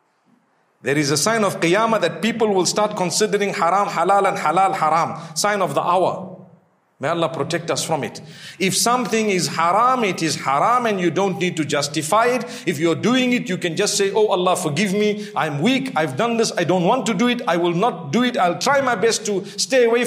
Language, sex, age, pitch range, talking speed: English, male, 50-69, 160-215 Hz, 225 wpm